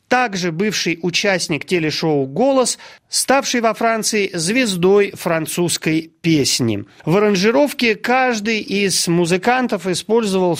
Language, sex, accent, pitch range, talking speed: Russian, male, native, 160-225 Hz, 95 wpm